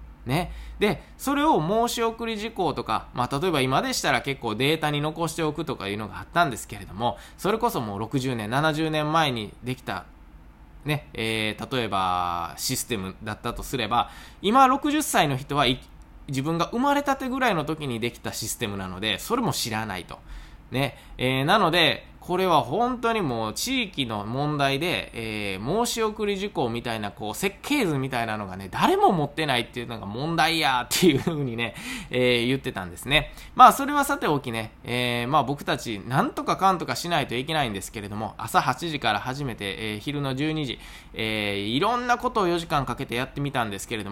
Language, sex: Japanese, male